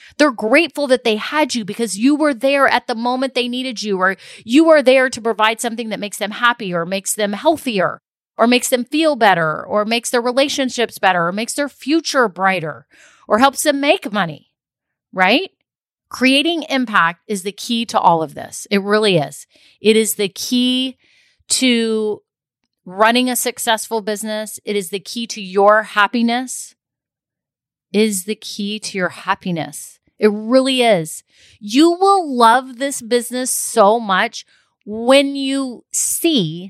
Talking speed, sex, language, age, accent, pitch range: 160 wpm, female, English, 30-49, American, 195-255 Hz